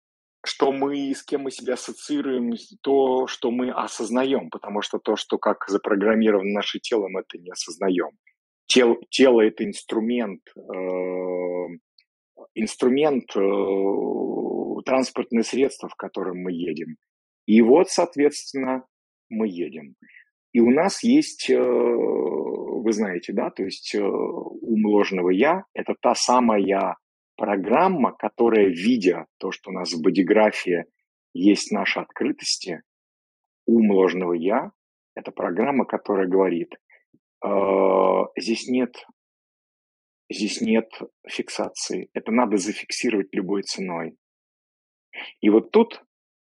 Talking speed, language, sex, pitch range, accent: 120 wpm, Russian, male, 100-145 Hz, native